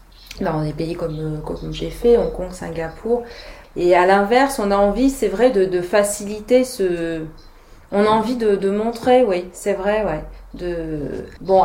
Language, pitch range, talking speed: French, 165-200 Hz, 175 wpm